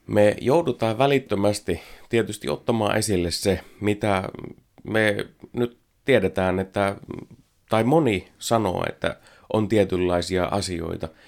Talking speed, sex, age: 95 wpm, male, 30-49